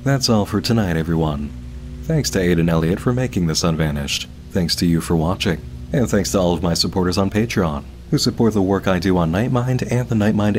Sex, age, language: male, 30-49, English